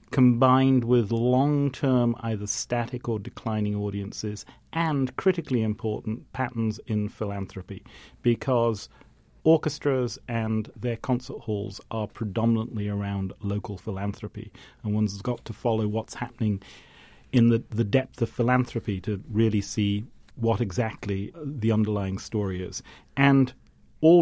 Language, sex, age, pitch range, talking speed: English, male, 40-59, 105-130 Hz, 120 wpm